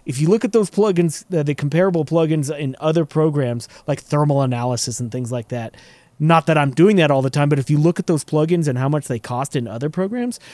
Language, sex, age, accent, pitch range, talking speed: English, male, 30-49, American, 130-170 Hz, 245 wpm